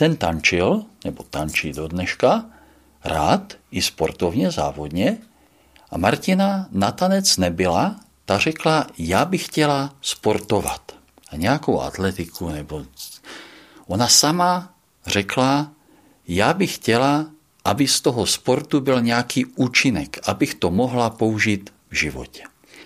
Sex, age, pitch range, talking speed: male, 50-69, 90-145 Hz, 115 wpm